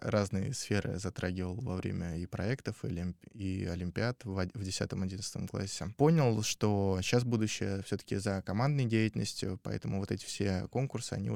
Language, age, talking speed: Russian, 20-39, 145 wpm